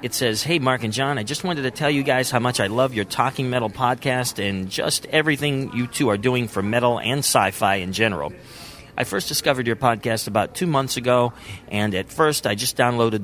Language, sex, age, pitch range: English, male, 40-59, 105-135 Hz